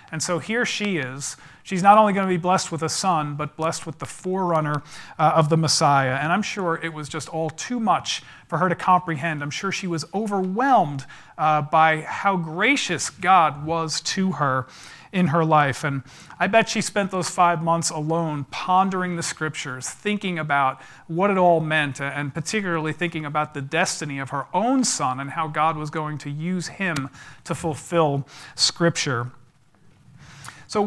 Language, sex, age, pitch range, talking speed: English, male, 40-59, 145-180 Hz, 180 wpm